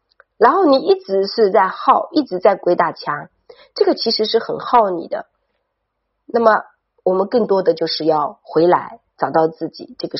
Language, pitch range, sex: Chinese, 160-195 Hz, female